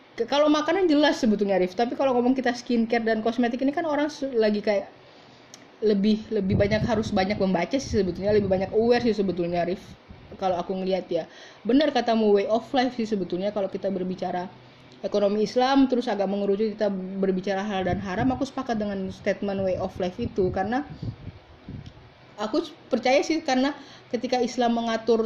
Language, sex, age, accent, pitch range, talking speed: Indonesian, female, 20-39, native, 190-240 Hz, 170 wpm